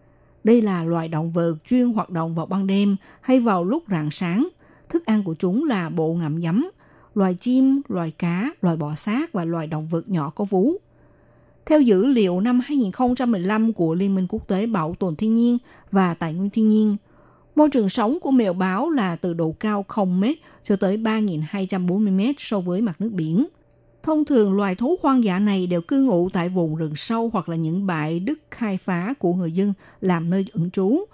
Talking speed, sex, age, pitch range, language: 200 wpm, female, 60-79, 175-230 Hz, Vietnamese